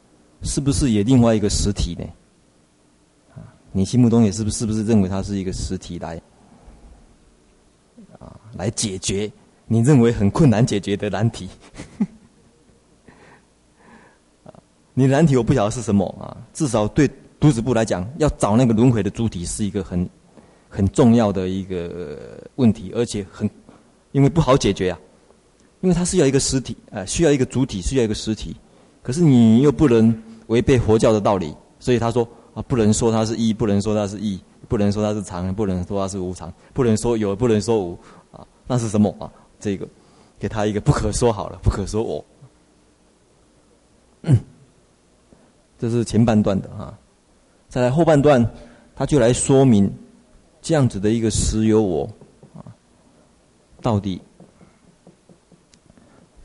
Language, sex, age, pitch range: Chinese, male, 30-49, 95-120 Hz